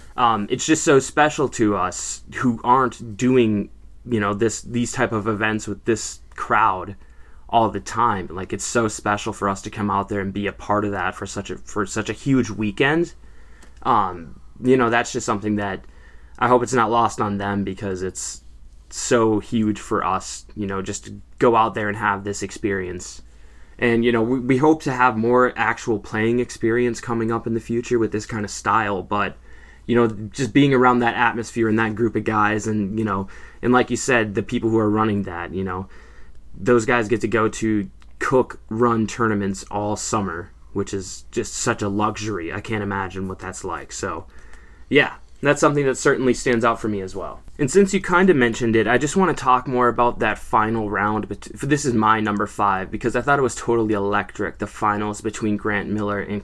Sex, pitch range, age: male, 100-120 Hz, 20-39